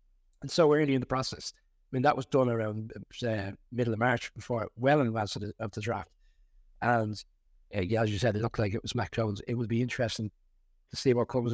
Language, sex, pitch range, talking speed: English, male, 110-130 Hz, 245 wpm